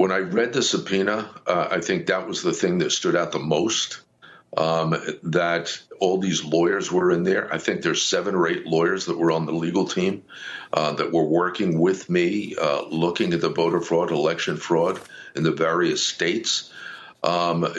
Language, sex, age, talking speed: English, male, 50-69, 190 wpm